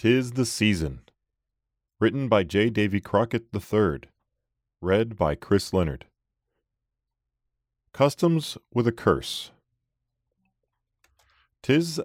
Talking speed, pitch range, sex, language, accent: 95 wpm, 85-110 Hz, male, English, American